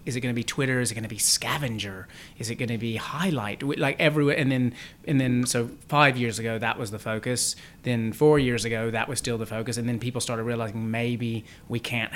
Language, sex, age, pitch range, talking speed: English, male, 30-49, 110-120 Hz, 240 wpm